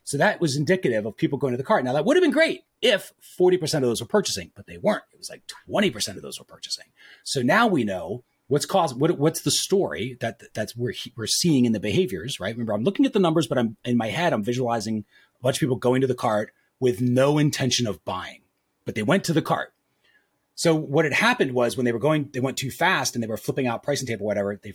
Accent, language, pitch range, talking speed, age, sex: American, English, 115-165 Hz, 265 wpm, 30-49, male